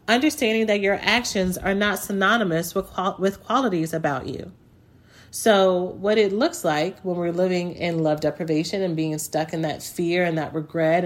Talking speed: 175 wpm